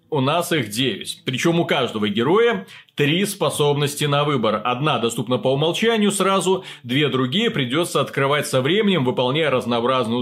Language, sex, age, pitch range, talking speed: Russian, male, 30-49, 125-180 Hz, 145 wpm